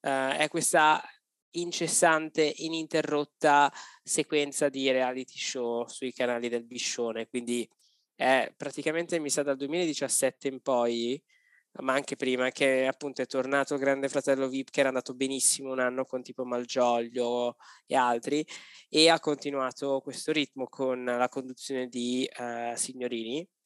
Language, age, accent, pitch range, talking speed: Italian, 20-39, native, 125-150 Hz, 140 wpm